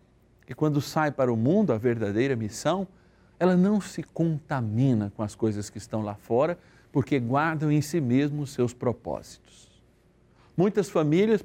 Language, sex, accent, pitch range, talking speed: Portuguese, male, Brazilian, 110-145 Hz, 155 wpm